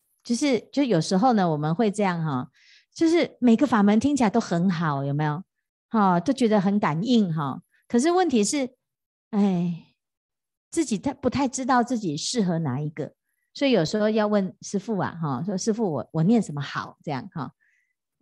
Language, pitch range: Chinese, 165-230 Hz